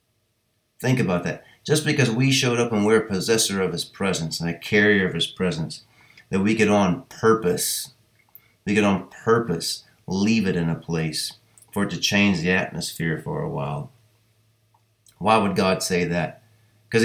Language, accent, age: English, American, 30-49